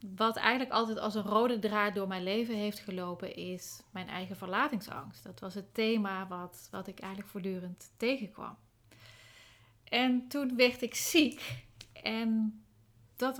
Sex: female